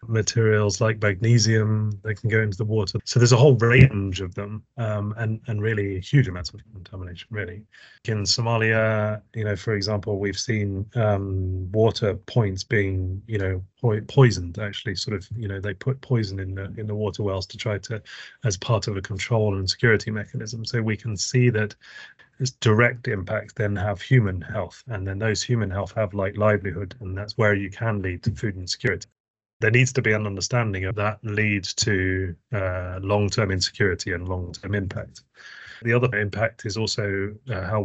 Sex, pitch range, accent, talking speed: male, 100-115 Hz, British, 185 wpm